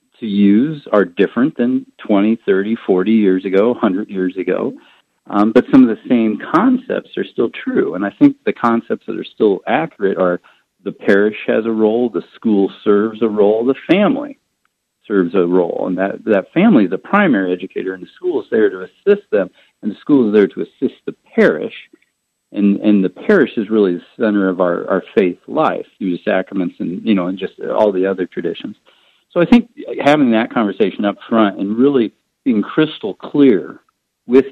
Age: 50-69